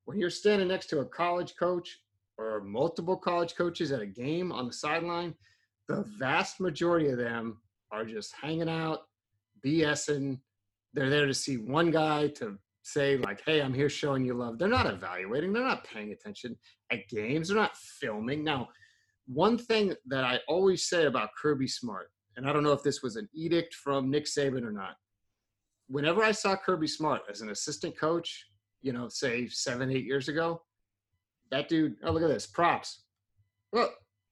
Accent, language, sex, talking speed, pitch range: American, English, male, 180 wpm, 115-170 Hz